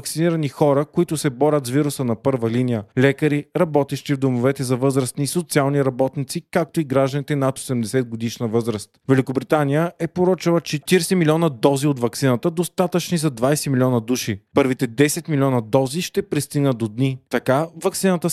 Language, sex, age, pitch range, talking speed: Bulgarian, male, 30-49, 130-165 Hz, 155 wpm